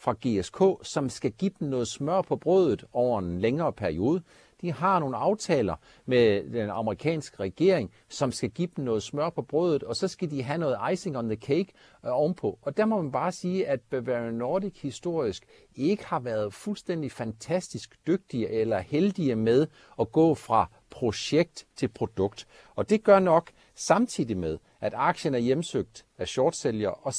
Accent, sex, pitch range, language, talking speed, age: native, male, 115-170 Hz, Danish, 175 wpm, 60-79